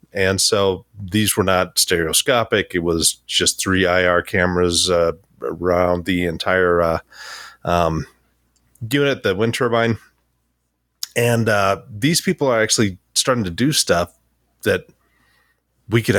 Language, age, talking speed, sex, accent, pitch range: English, 30-49, 135 wpm, male, American, 90-115 Hz